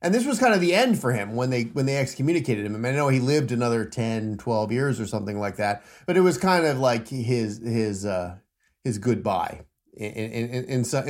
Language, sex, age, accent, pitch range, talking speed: English, male, 30-49, American, 110-145 Hz, 245 wpm